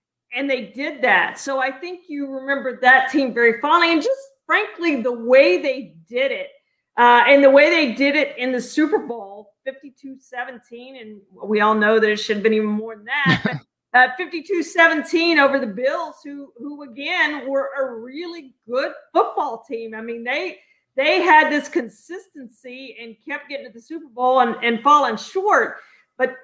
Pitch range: 240-285 Hz